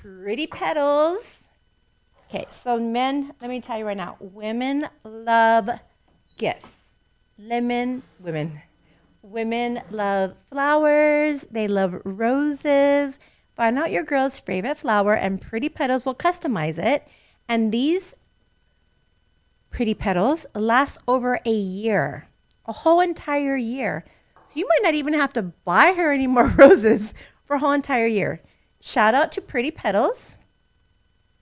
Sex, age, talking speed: female, 30-49, 130 wpm